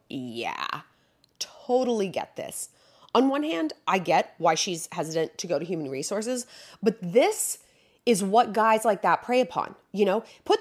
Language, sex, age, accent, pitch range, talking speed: English, female, 30-49, American, 180-250 Hz, 165 wpm